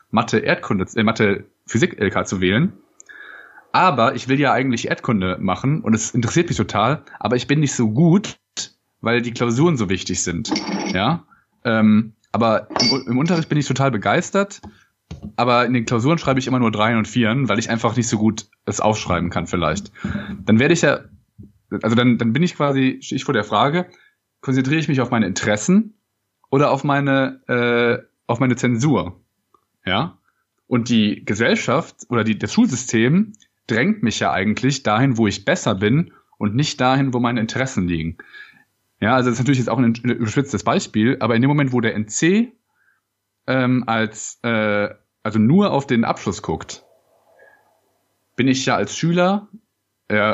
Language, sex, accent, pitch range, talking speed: German, male, German, 110-135 Hz, 175 wpm